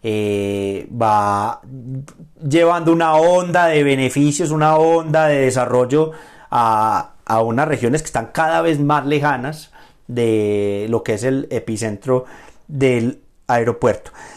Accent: Colombian